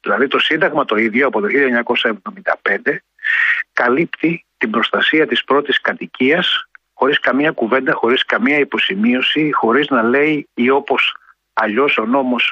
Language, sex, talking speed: Greek, male, 130 wpm